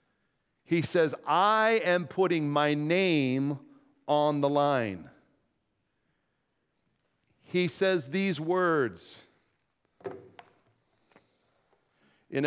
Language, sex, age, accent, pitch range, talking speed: English, male, 50-69, American, 140-190 Hz, 70 wpm